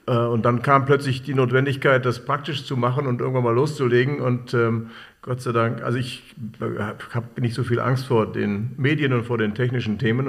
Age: 50-69